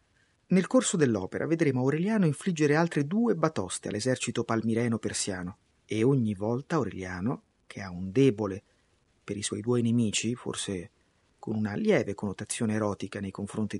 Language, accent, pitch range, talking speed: Italian, native, 105-150 Hz, 145 wpm